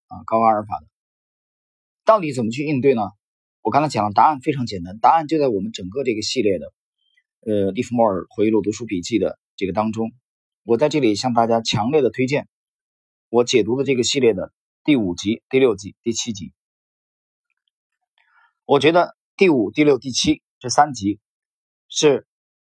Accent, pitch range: native, 105-170 Hz